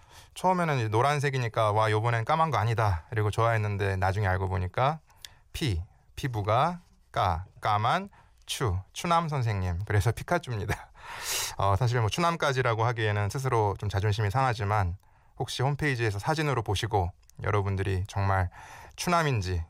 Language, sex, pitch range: Korean, male, 95-120 Hz